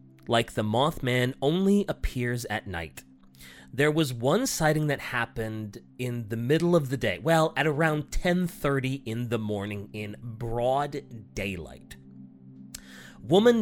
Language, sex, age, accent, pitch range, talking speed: English, male, 30-49, American, 95-150 Hz, 130 wpm